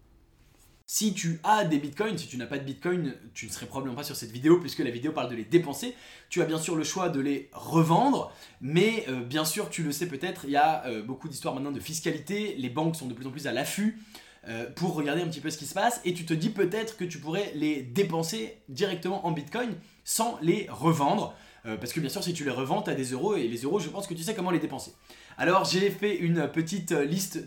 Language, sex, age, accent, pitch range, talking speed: English, male, 20-39, French, 135-195 Hz, 255 wpm